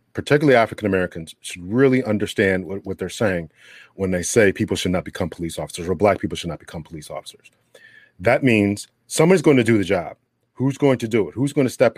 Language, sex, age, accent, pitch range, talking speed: English, male, 40-59, American, 95-110 Hz, 215 wpm